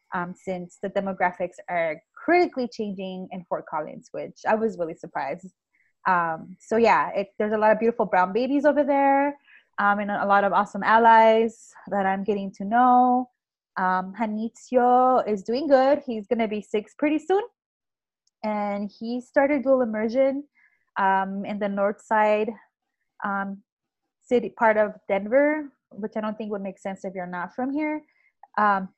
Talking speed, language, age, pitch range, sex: 165 wpm, English, 20-39, 200-255 Hz, female